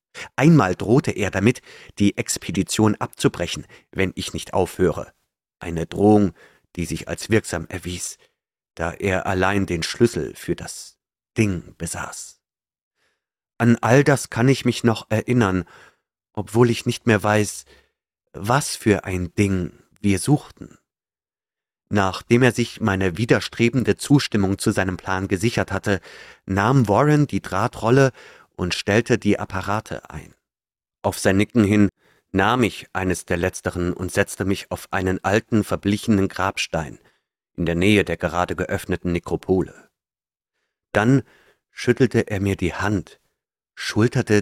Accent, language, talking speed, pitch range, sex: German, German, 130 wpm, 90-110 Hz, male